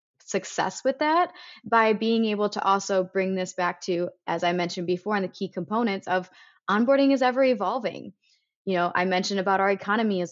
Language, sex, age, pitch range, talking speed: English, female, 20-39, 180-220 Hz, 190 wpm